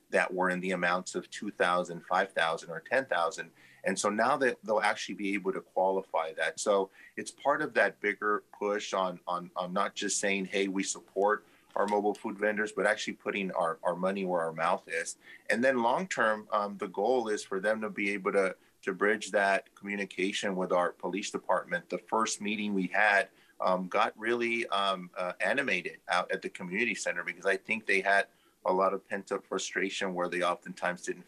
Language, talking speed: English, 195 wpm